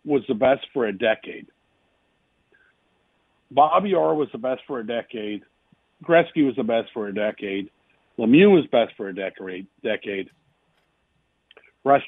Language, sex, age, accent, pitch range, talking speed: English, male, 50-69, American, 130-185 Hz, 140 wpm